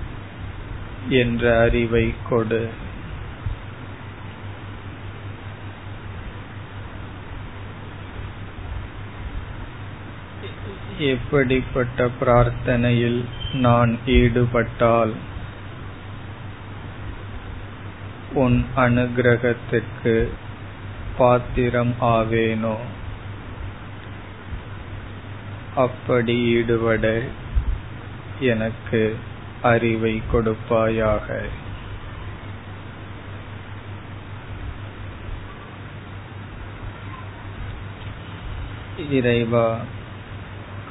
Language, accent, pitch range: Tamil, native, 100-115 Hz